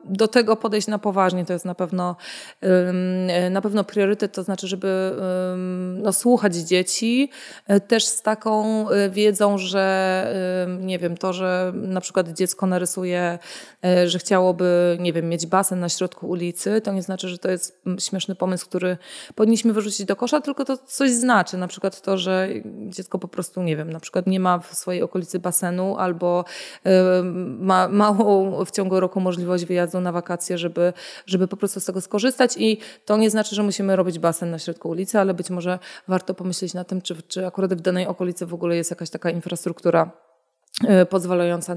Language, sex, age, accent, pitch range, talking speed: Polish, female, 20-39, native, 180-200 Hz, 175 wpm